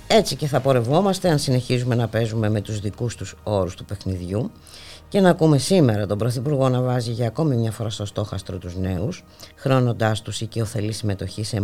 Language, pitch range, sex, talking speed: Greek, 100-130 Hz, female, 185 wpm